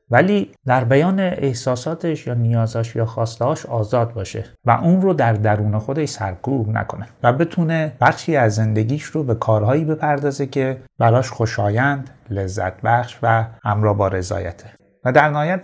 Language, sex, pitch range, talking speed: Persian, male, 105-135 Hz, 150 wpm